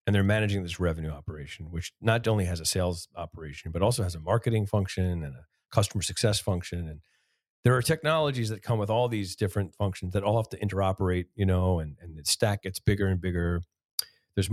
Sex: male